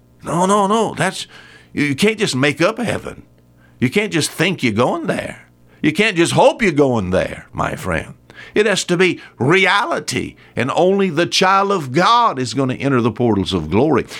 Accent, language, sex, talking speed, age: American, English, male, 190 wpm, 50-69